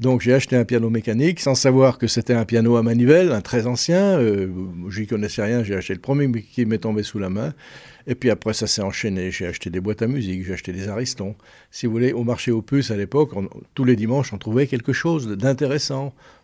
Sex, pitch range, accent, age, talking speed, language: male, 100-125 Hz, French, 60-79, 240 wpm, French